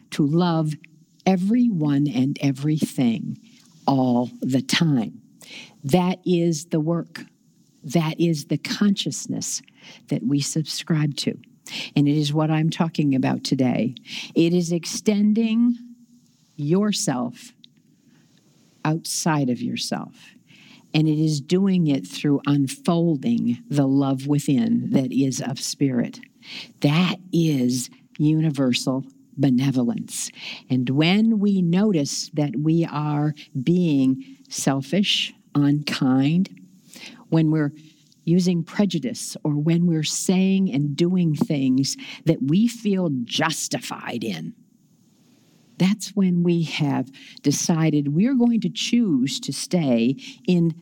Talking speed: 105 wpm